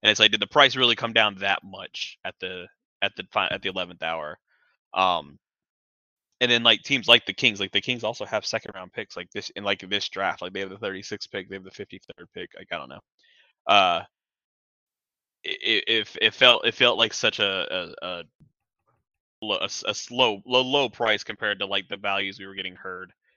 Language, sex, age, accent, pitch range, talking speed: English, male, 20-39, American, 95-120 Hz, 220 wpm